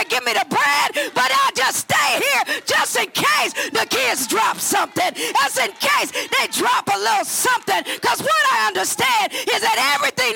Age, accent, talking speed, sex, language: 40-59, American, 180 wpm, female, English